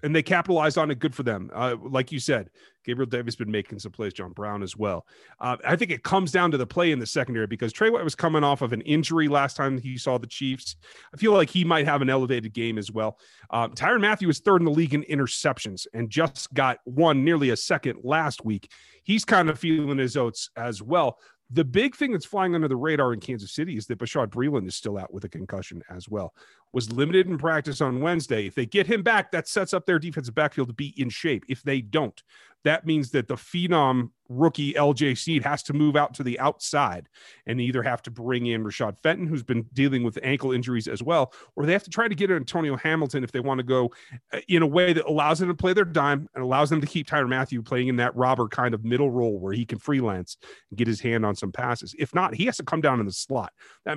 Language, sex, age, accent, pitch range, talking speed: English, male, 40-59, American, 120-165 Hz, 255 wpm